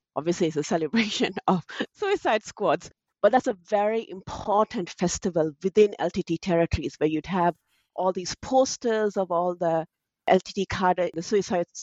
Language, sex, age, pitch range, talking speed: English, female, 30-49, 165-205 Hz, 145 wpm